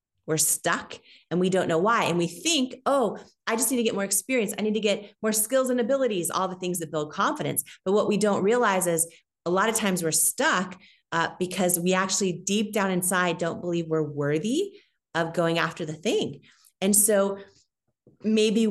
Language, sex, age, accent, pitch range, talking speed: English, female, 30-49, American, 160-200 Hz, 200 wpm